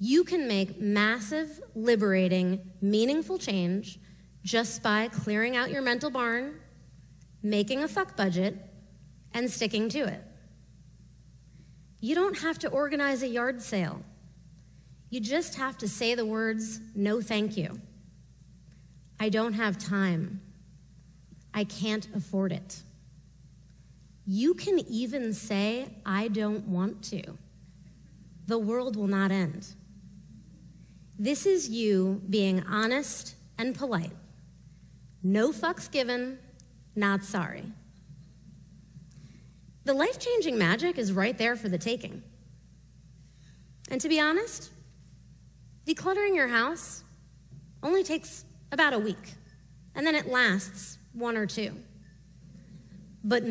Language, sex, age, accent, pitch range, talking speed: English, female, 30-49, American, 190-260 Hz, 115 wpm